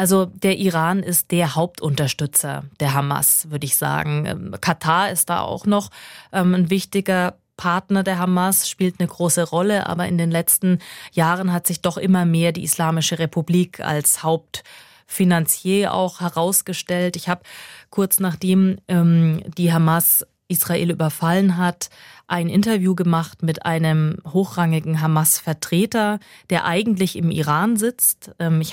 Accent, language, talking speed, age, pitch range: German, German, 135 wpm, 20-39, 160-185 Hz